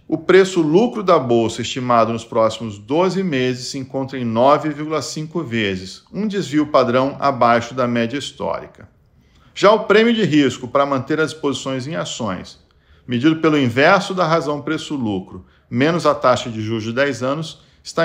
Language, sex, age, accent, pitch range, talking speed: Portuguese, male, 50-69, Brazilian, 120-160 Hz, 155 wpm